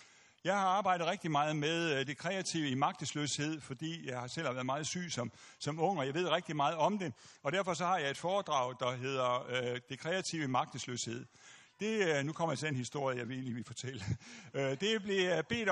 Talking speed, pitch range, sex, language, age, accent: 210 wpm, 135-190 Hz, male, Danish, 60-79, native